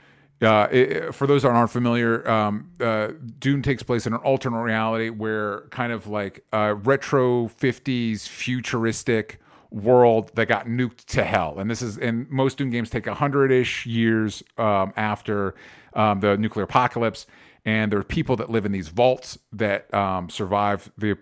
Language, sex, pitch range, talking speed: English, male, 105-125 Hz, 175 wpm